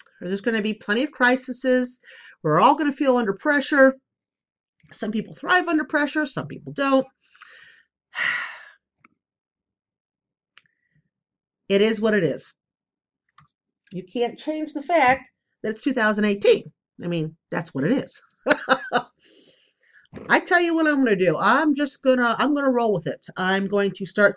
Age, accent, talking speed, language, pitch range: 40-59, American, 155 wpm, English, 170-270 Hz